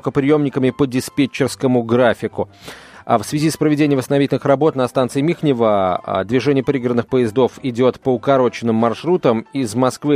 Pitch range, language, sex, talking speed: 125-155 Hz, Russian, male, 135 wpm